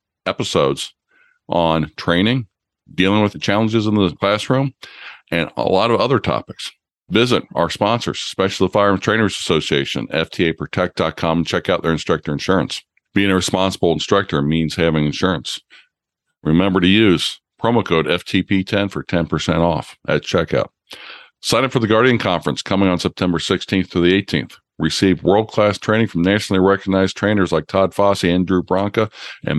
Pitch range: 85-100 Hz